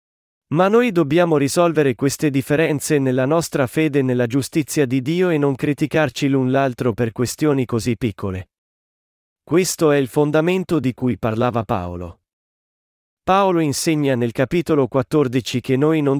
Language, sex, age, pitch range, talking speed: Italian, male, 40-59, 120-155 Hz, 140 wpm